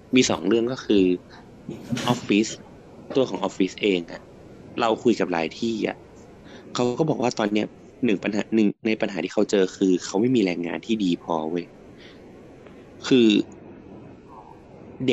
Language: Thai